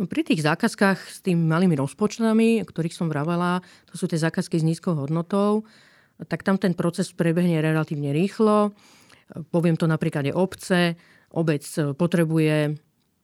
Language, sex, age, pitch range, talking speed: Slovak, female, 40-59, 160-195 Hz, 140 wpm